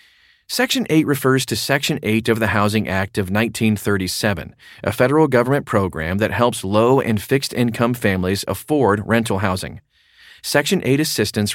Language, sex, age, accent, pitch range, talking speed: English, male, 30-49, American, 105-140 Hz, 145 wpm